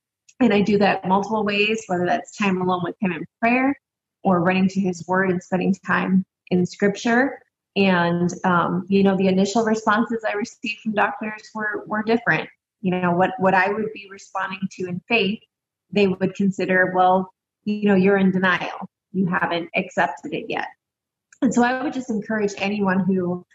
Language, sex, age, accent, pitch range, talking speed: English, female, 20-39, American, 185-215 Hz, 180 wpm